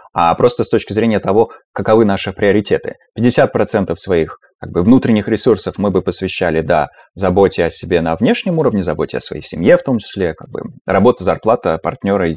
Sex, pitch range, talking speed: male, 90-110 Hz, 160 wpm